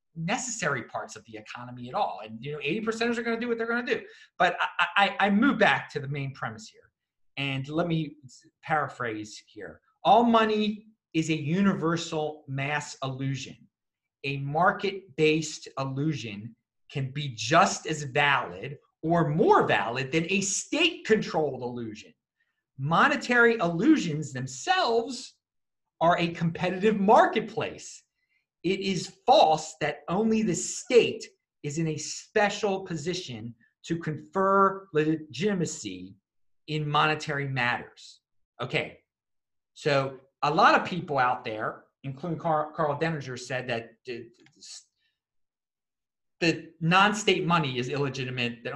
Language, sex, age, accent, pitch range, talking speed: English, male, 30-49, American, 135-180 Hz, 130 wpm